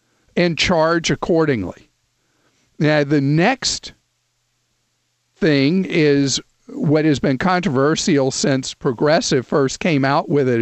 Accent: American